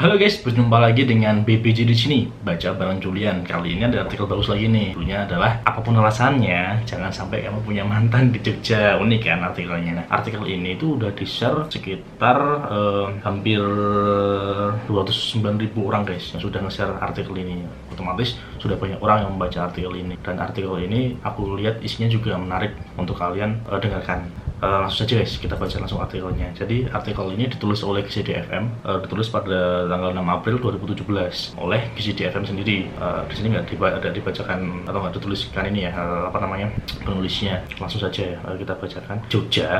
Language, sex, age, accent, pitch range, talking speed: Indonesian, male, 20-39, native, 95-110 Hz, 170 wpm